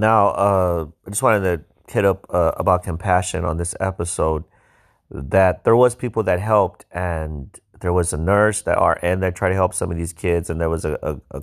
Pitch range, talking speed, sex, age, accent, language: 80-100 Hz, 215 wpm, male, 30-49, American, English